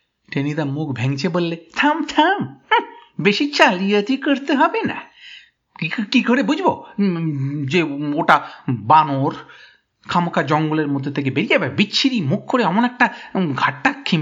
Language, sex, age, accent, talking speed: Bengali, male, 50-69, native, 120 wpm